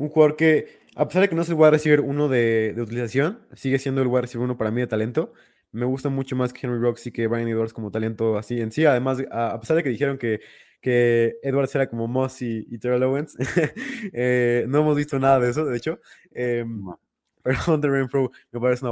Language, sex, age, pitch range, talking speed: Spanish, male, 20-39, 120-140 Hz, 240 wpm